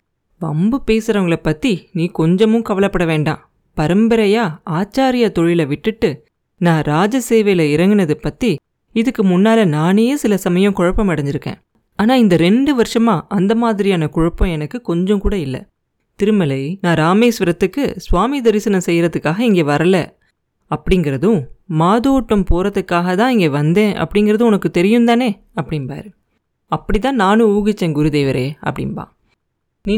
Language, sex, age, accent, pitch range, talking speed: Tamil, female, 30-49, native, 165-225 Hz, 115 wpm